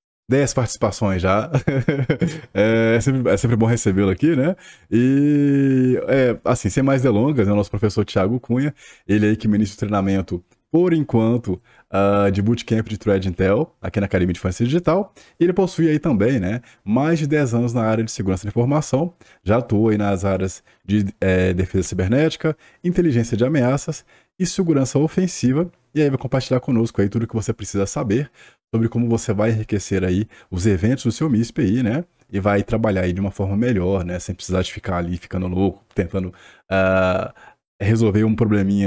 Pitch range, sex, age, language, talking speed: 100-135 Hz, male, 20-39, Portuguese, 185 wpm